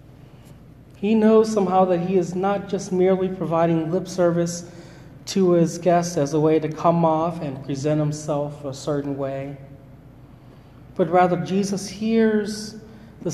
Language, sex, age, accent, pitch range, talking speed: English, male, 30-49, American, 135-180 Hz, 145 wpm